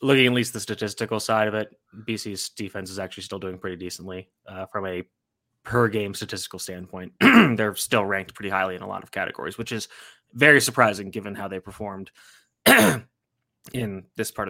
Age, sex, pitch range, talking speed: 20-39, male, 100-120 Hz, 180 wpm